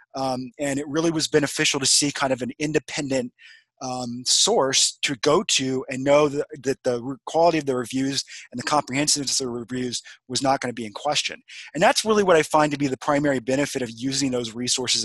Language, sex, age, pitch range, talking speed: English, male, 30-49, 130-150 Hz, 215 wpm